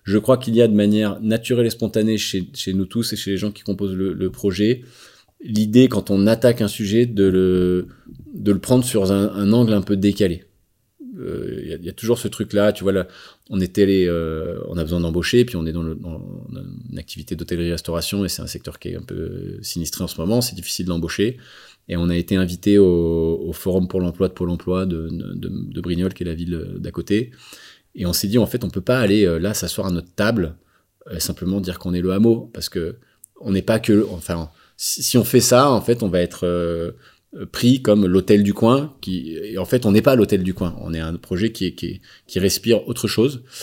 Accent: French